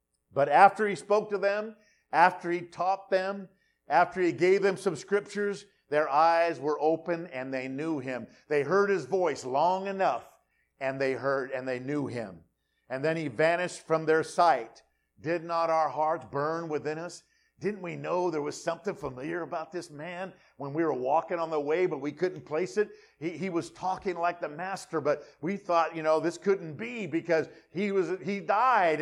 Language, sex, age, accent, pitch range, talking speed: English, male, 50-69, American, 165-215 Hz, 190 wpm